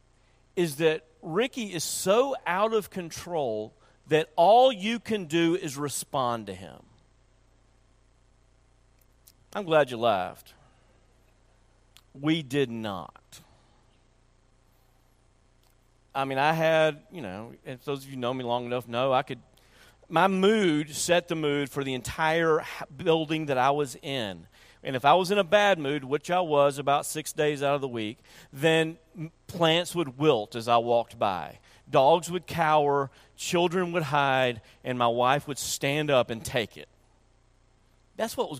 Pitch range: 125-175 Hz